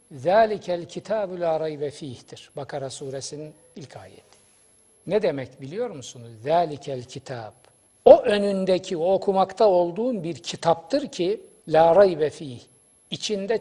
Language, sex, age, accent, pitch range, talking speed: Turkish, male, 60-79, native, 135-195 Hz, 120 wpm